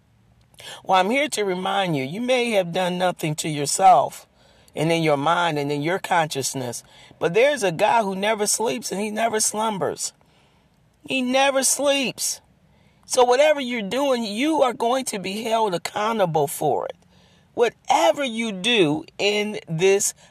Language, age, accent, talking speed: English, 40-59, American, 155 wpm